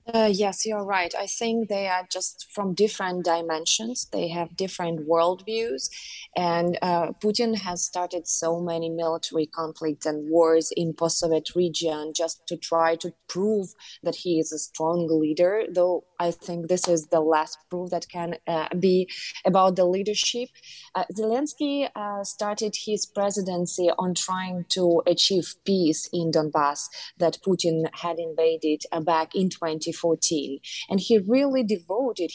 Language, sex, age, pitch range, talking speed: English, female, 20-39, 165-195 Hz, 150 wpm